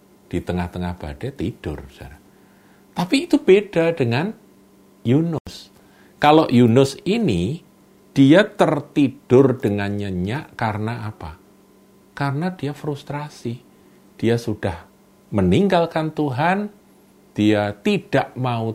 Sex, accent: male, native